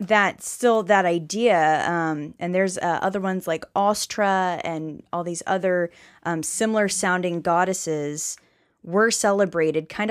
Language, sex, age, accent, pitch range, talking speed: English, female, 10-29, American, 165-210 Hz, 135 wpm